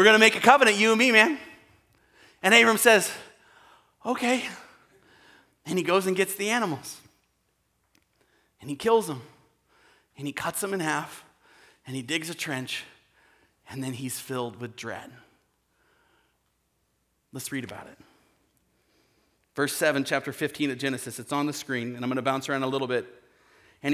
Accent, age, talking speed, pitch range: American, 30-49, 165 wpm, 130-160 Hz